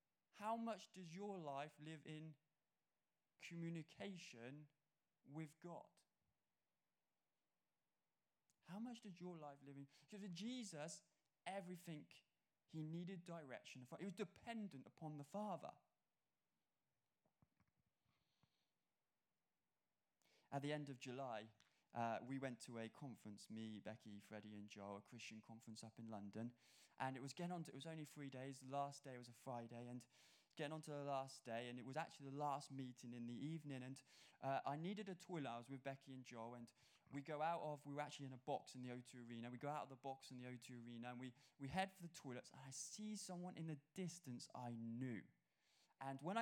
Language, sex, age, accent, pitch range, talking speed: English, male, 20-39, British, 125-165 Hz, 175 wpm